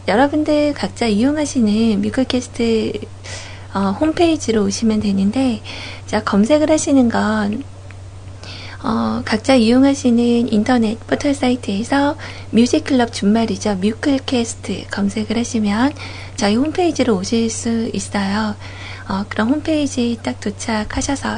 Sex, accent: female, native